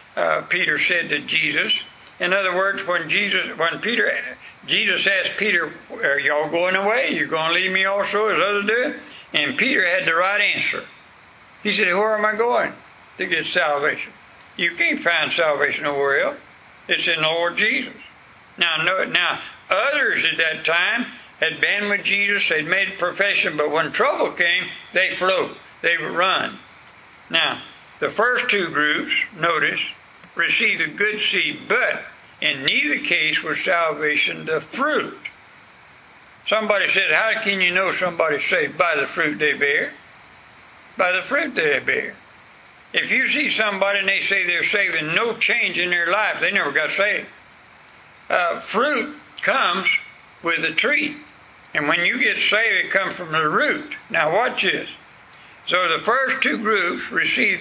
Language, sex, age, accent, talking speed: English, male, 60-79, American, 165 wpm